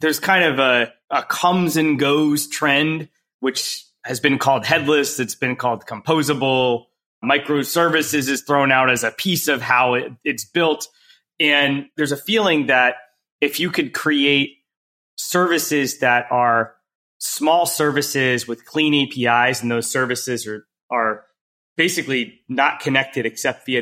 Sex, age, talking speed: male, 30-49, 145 wpm